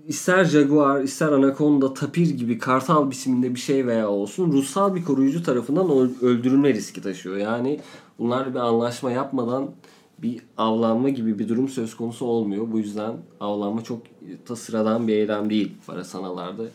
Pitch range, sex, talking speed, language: 105-140 Hz, male, 145 wpm, Turkish